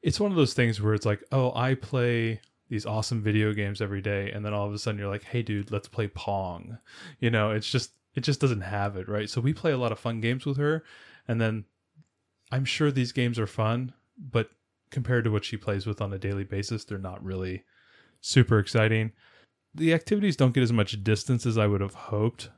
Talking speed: 230 wpm